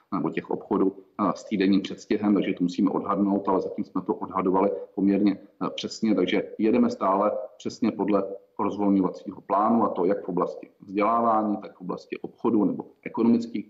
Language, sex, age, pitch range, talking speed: Czech, male, 40-59, 95-105 Hz, 160 wpm